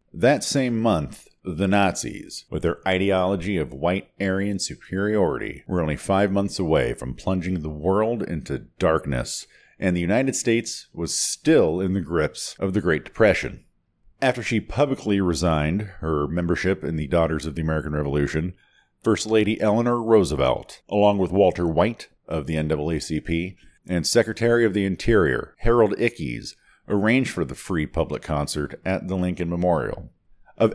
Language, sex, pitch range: English, male, 90-125 Hz